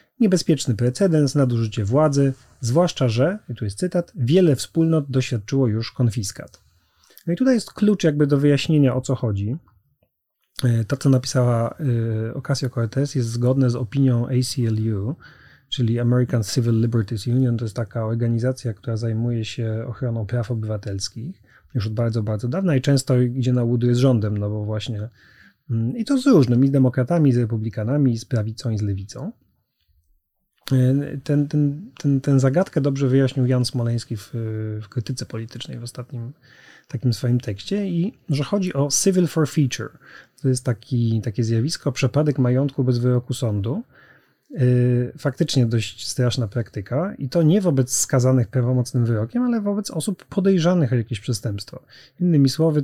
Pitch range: 115-145 Hz